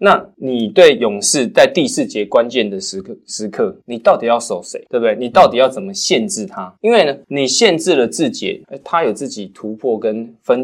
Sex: male